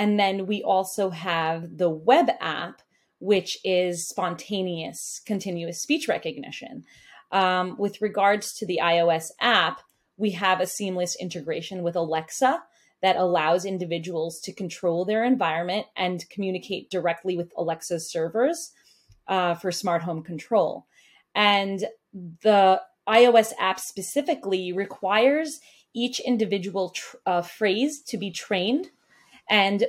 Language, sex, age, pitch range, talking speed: English, female, 30-49, 180-220 Hz, 120 wpm